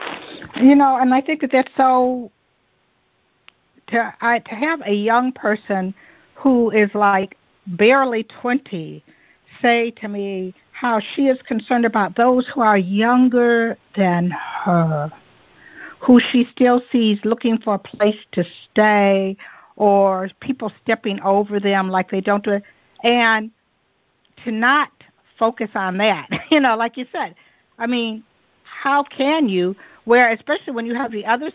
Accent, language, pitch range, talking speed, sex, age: American, English, 200-245 Hz, 145 wpm, female, 60-79